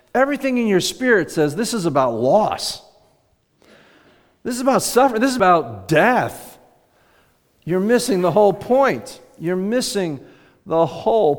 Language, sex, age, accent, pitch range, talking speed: English, male, 50-69, American, 130-195 Hz, 135 wpm